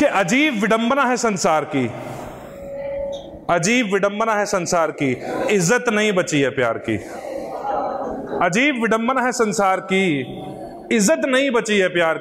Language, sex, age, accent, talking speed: Hindi, male, 30-49, native, 130 wpm